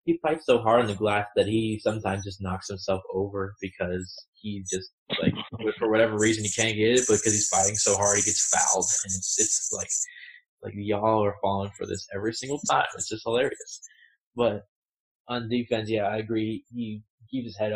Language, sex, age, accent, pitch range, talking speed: English, male, 20-39, American, 100-115 Hz, 205 wpm